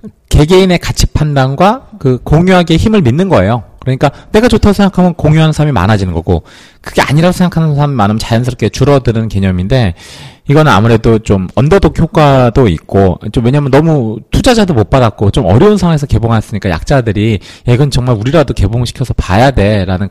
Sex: male